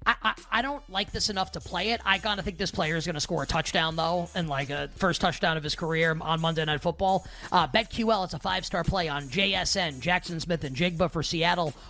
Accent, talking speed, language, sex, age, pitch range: American, 250 wpm, English, male, 30-49, 155-190 Hz